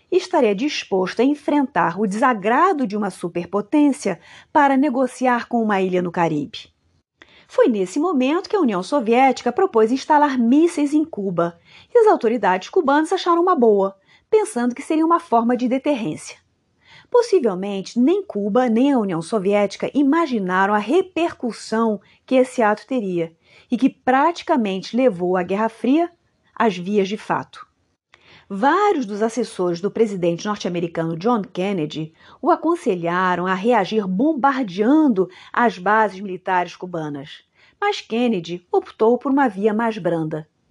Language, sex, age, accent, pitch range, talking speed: Portuguese, female, 40-59, Brazilian, 195-290 Hz, 135 wpm